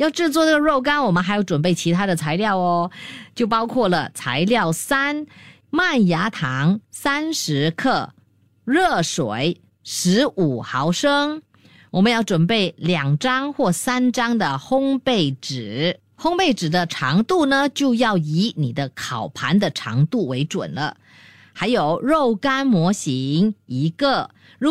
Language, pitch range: Chinese, 155-240 Hz